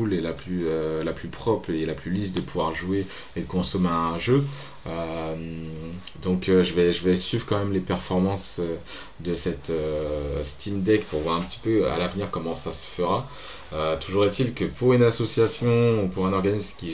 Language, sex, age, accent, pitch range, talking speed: French, male, 20-39, French, 80-100 Hz, 200 wpm